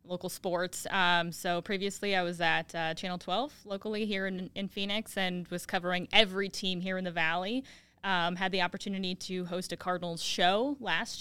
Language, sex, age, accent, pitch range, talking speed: English, female, 20-39, American, 180-215 Hz, 185 wpm